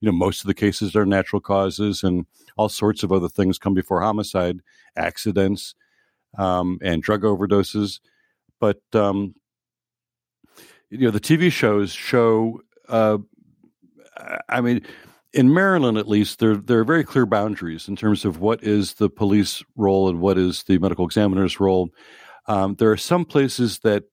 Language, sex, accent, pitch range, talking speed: English, male, American, 95-110 Hz, 160 wpm